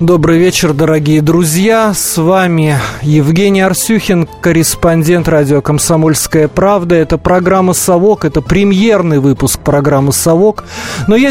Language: Russian